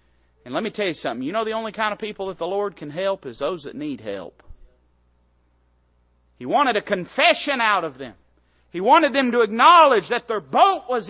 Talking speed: 210 wpm